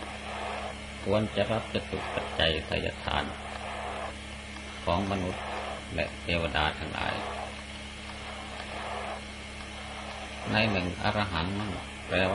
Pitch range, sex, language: 70-95 Hz, male, Thai